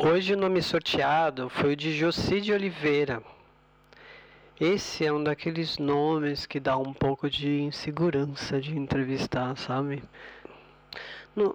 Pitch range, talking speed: 145-180 Hz, 125 wpm